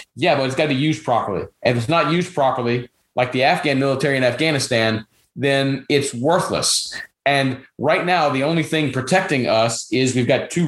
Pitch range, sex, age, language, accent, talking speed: 125-150 Hz, male, 30-49, English, American, 195 wpm